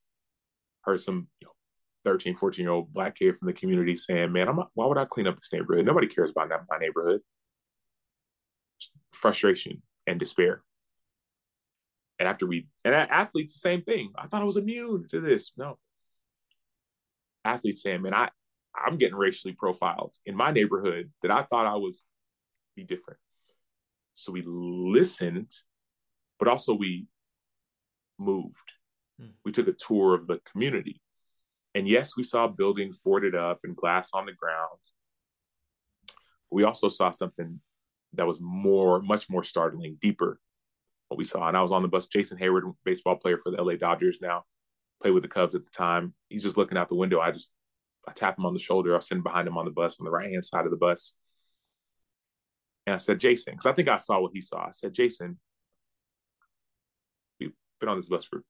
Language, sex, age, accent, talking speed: English, male, 30-49, American, 185 wpm